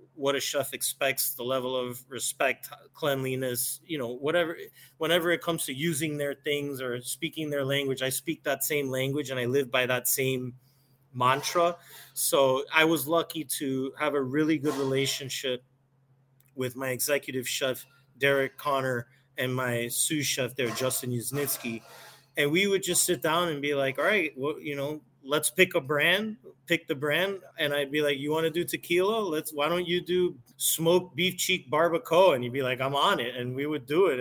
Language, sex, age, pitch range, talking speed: English, male, 30-49, 130-160 Hz, 190 wpm